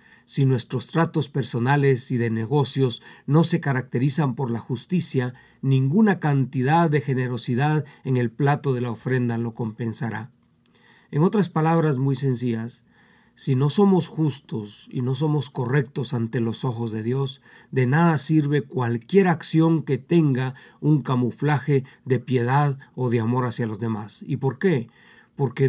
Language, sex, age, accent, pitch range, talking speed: Spanish, male, 50-69, Mexican, 120-145 Hz, 150 wpm